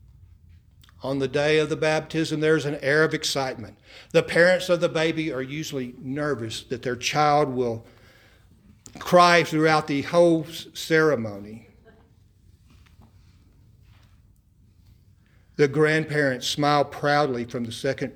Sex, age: male, 50-69